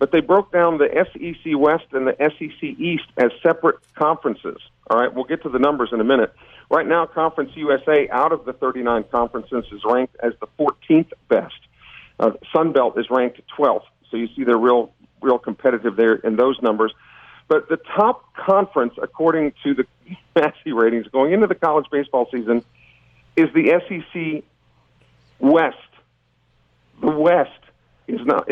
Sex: male